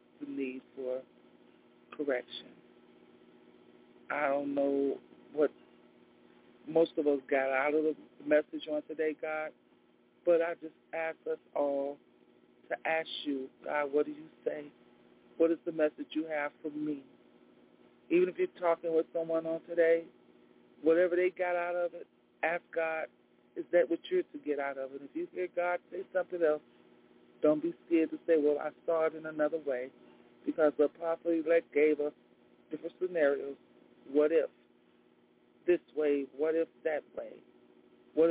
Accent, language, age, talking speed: American, English, 40-59, 160 wpm